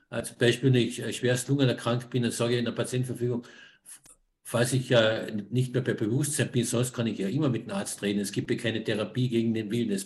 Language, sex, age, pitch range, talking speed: German, male, 50-69, 120-135 Hz, 235 wpm